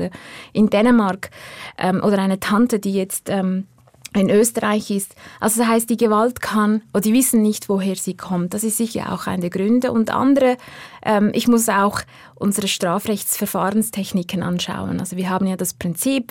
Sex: female